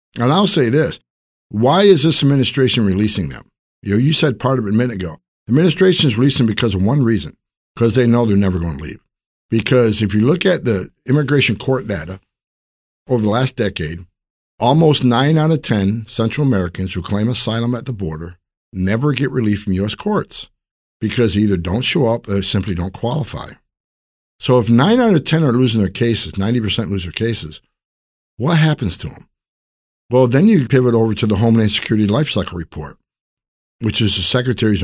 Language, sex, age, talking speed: English, male, 60-79, 195 wpm